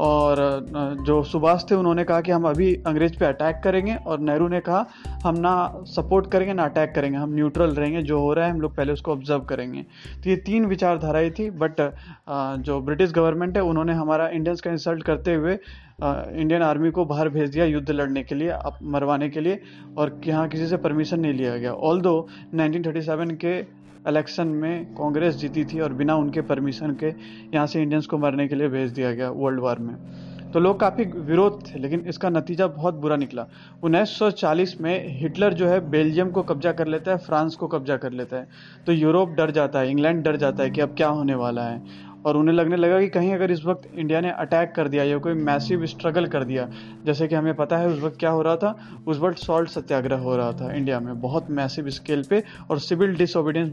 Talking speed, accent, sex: 215 wpm, native, male